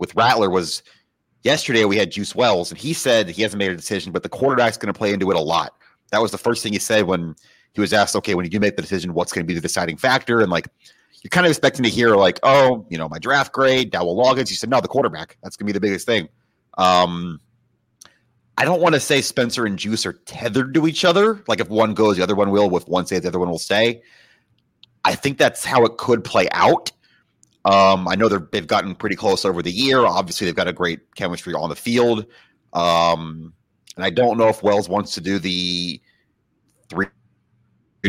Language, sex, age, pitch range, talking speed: English, male, 30-49, 90-110 Hz, 230 wpm